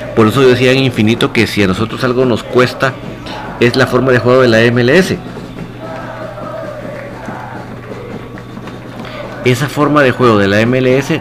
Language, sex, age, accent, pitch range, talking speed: Spanish, male, 50-69, Mexican, 105-130 Hz, 150 wpm